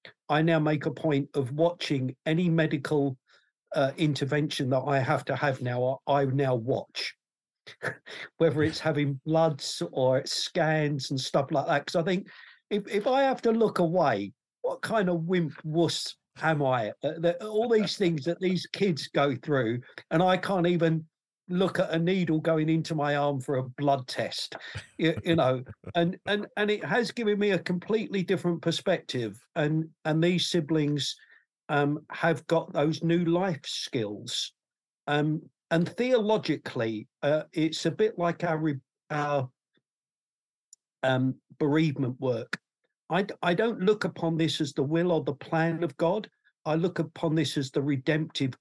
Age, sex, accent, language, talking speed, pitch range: 50-69, male, British, English, 160 wpm, 140-175 Hz